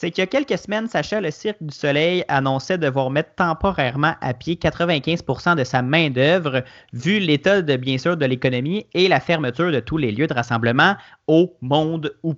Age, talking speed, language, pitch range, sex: 30-49, 200 wpm, French, 130-175 Hz, male